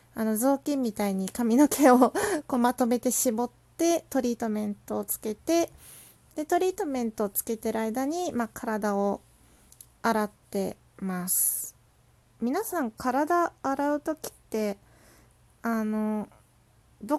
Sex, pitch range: female, 210-275 Hz